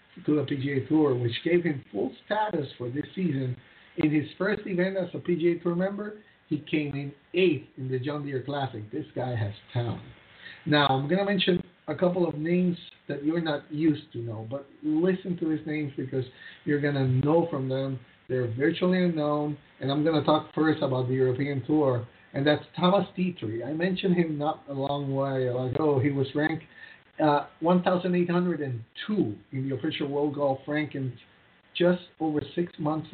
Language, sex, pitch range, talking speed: English, male, 135-175 Hz, 185 wpm